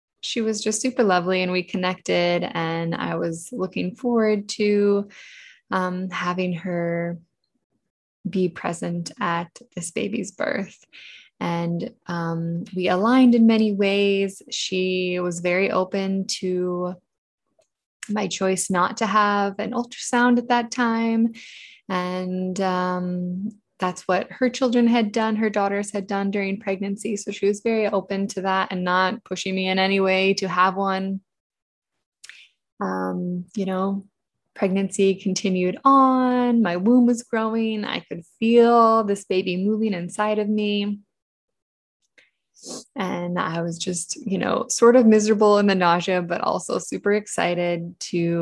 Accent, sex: American, female